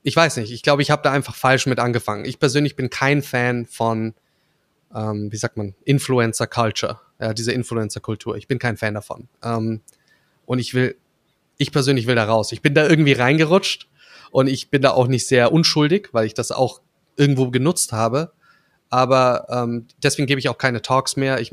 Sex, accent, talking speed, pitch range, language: male, German, 200 wpm, 115-140 Hz, German